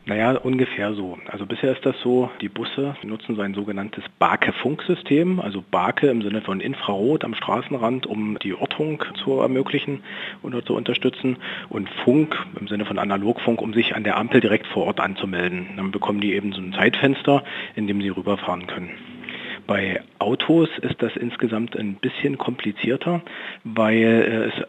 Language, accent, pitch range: German, German, 100-130 Hz